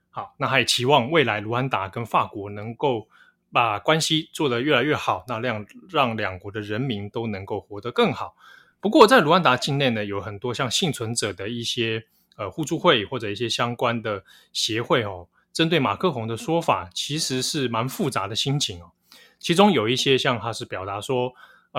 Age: 20-39